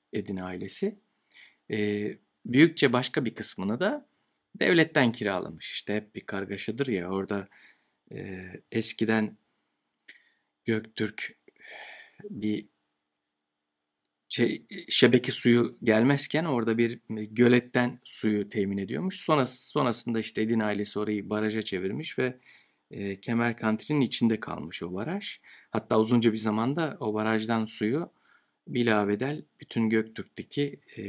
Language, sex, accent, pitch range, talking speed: Turkish, male, native, 105-130 Hz, 110 wpm